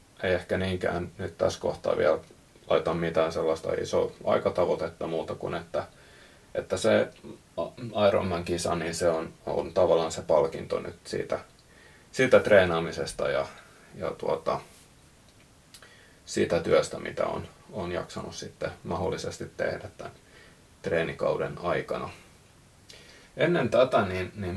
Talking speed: 120 wpm